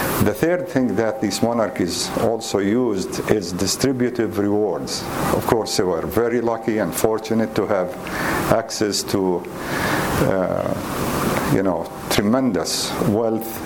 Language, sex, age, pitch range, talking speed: English, male, 50-69, 95-115 Hz, 125 wpm